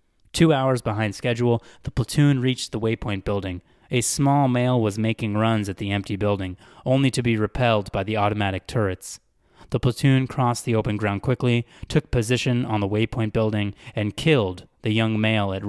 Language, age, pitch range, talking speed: English, 20-39, 100-120 Hz, 180 wpm